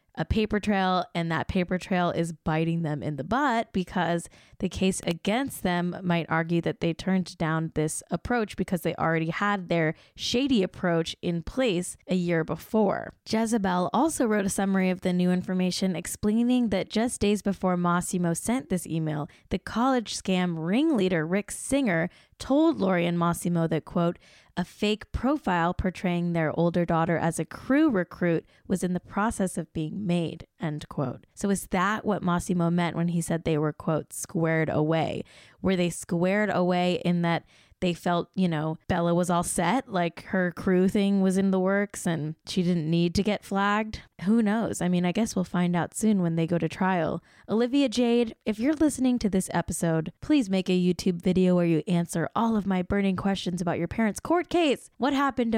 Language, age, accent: English, 10-29, American